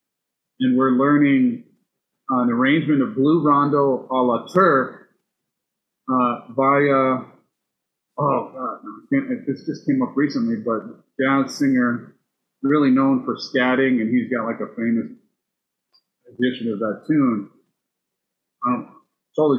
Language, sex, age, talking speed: English, male, 40-59, 130 wpm